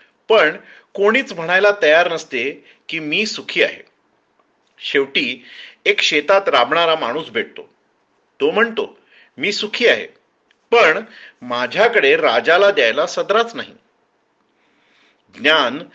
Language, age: Marathi, 40-59